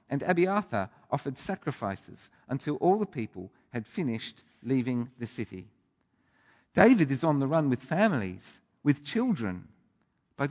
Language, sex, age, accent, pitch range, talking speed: English, male, 50-69, British, 115-160 Hz, 130 wpm